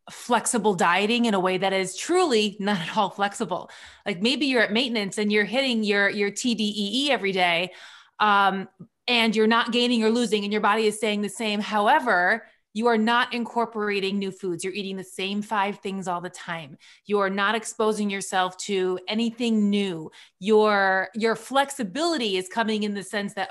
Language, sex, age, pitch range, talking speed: English, female, 30-49, 195-230 Hz, 185 wpm